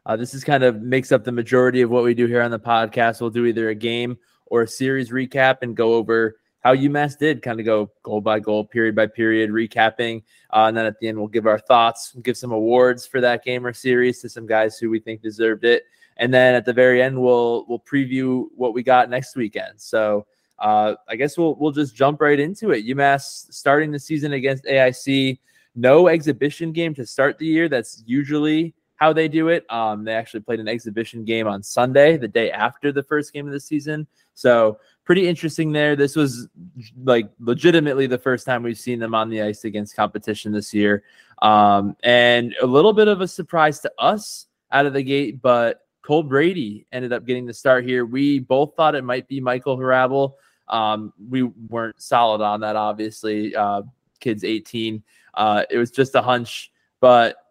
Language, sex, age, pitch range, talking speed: English, male, 20-39, 115-140 Hz, 210 wpm